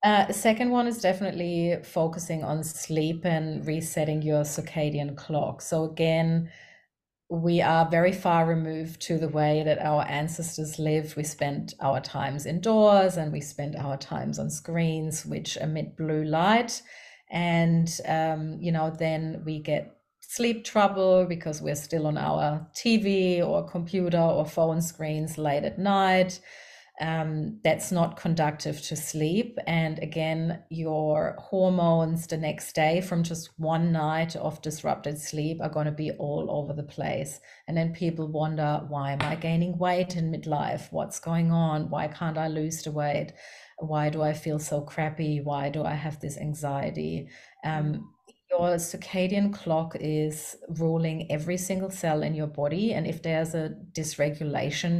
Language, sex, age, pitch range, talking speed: English, female, 30-49, 155-175 Hz, 155 wpm